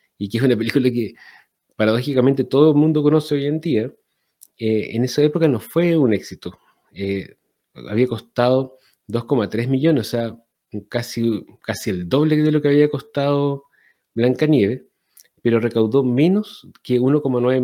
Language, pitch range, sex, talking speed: Spanish, 110-140 Hz, male, 150 wpm